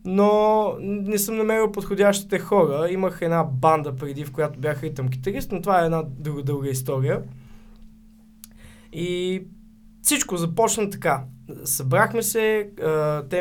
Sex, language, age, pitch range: male, Bulgarian, 20-39, 130-185 Hz